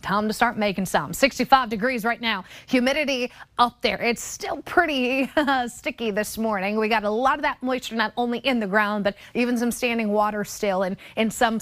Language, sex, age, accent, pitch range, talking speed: English, female, 30-49, American, 205-255 Hz, 210 wpm